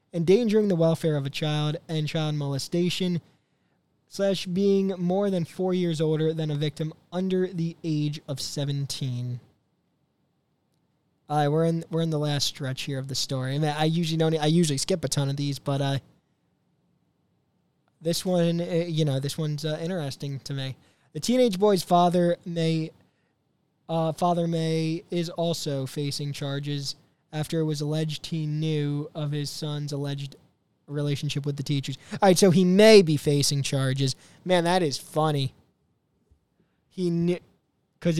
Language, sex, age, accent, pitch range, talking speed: English, male, 20-39, American, 140-170 Hz, 160 wpm